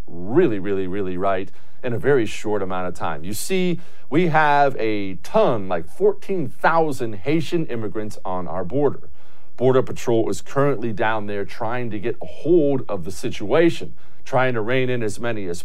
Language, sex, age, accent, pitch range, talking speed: English, male, 40-59, American, 110-145 Hz, 175 wpm